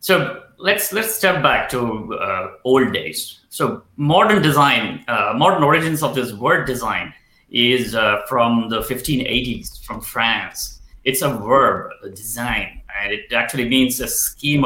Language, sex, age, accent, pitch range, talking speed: English, male, 30-49, Indian, 120-150 Hz, 150 wpm